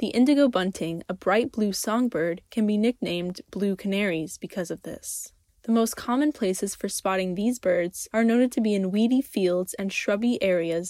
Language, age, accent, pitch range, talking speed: English, 10-29, American, 185-240 Hz, 180 wpm